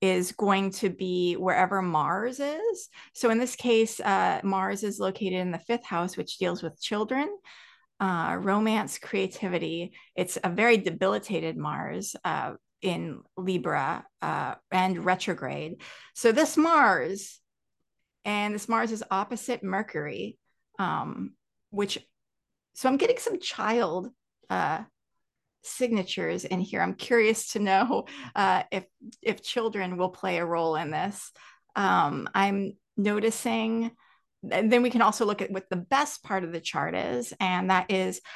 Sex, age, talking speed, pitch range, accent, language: female, 30-49, 140 wpm, 185-230 Hz, American, English